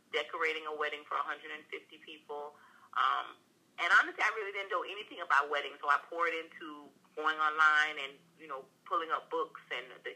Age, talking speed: 30-49, 175 wpm